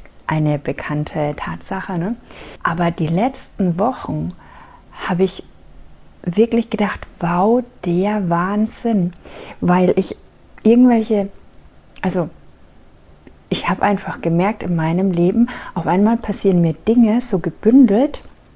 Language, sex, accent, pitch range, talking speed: German, female, German, 175-220 Hz, 105 wpm